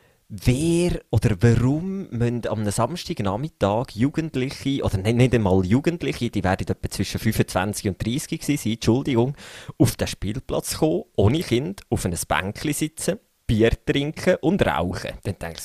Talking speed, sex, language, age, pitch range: 140 wpm, male, German, 30-49, 100-130 Hz